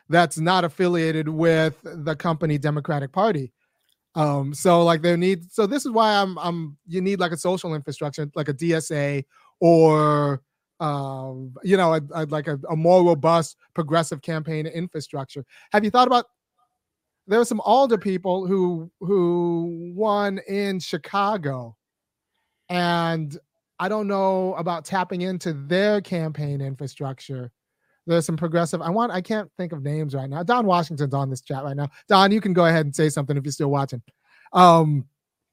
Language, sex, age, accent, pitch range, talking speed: English, male, 30-49, American, 150-180 Hz, 165 wpm